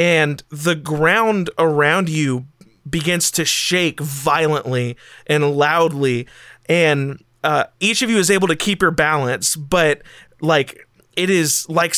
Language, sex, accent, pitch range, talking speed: English, male, American, 145-170 Hz, 135 wpm